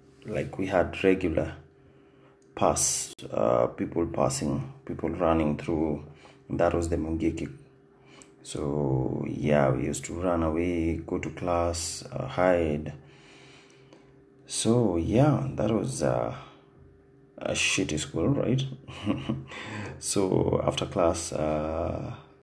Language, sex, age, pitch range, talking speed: English, male, 30-49, 80-125 Hz, 105 wpm